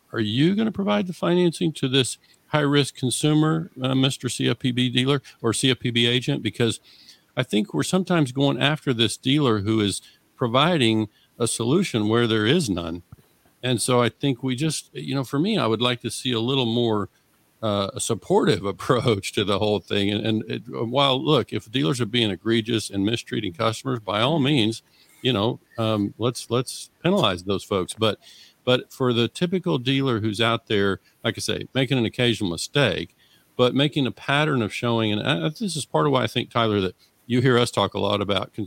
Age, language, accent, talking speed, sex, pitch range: 50-69, English, American, 190 wpm, male, 105-135 Hz